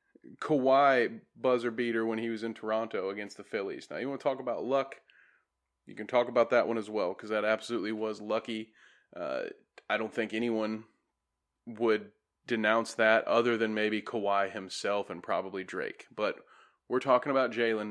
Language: English